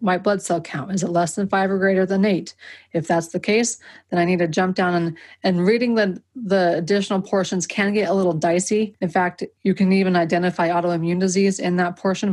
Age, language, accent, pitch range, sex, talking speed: 30-49, English, American, 175-200 Hz, female, 225 wpm